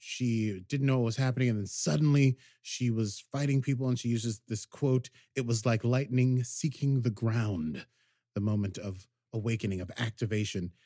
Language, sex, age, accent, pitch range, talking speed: English, male, 30-49, American, 105-135 Hz, 170 wpm